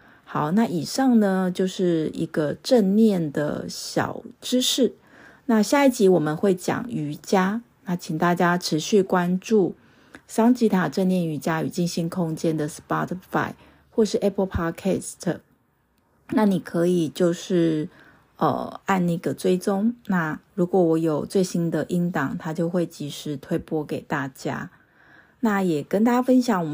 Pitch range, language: 160-200 Hz, Chinese